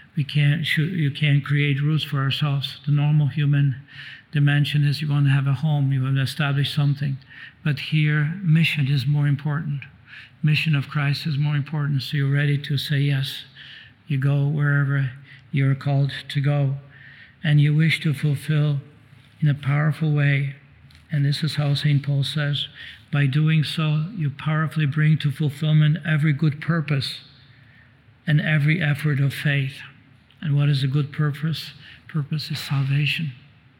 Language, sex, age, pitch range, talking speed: English, male, 60-79, 140-150 Hz, 160 wpm